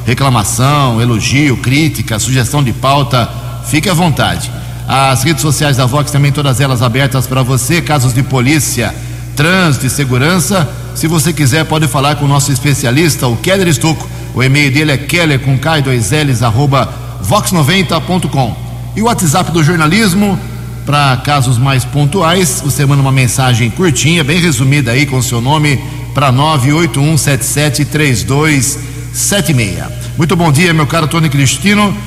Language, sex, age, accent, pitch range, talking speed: Portuguese, male, 60-79, Brazilian, 125-150 Hz, 140 wpm